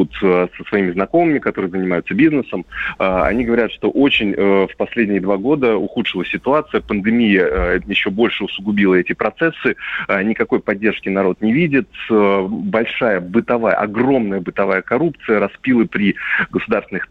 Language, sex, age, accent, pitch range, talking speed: Russian, male, 30-49, native, 95-115 Hz, 125 wpm